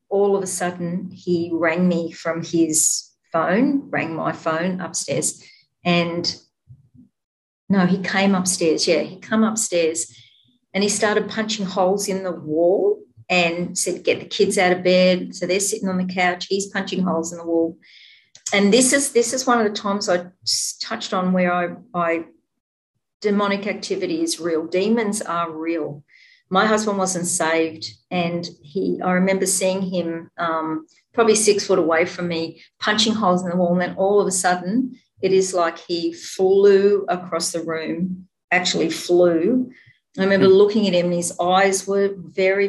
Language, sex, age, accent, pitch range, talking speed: English, female, 50-69, Australian, 170-200 Hz, 170 wpm